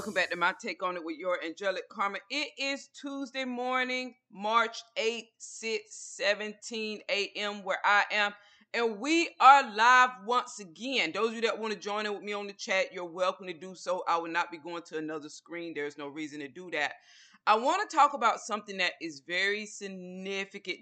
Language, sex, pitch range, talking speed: English, female, 185-255 Hz, 205 wpm